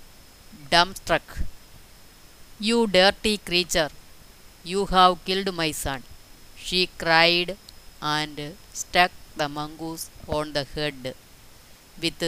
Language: Malayalam